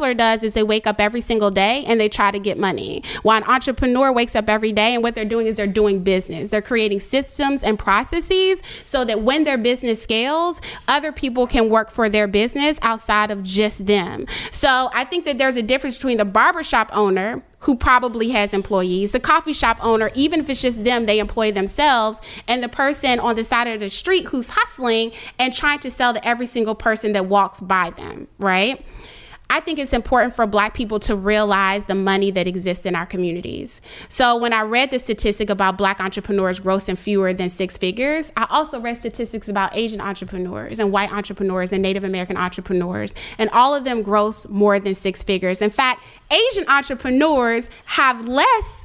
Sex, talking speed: female, 200 wpm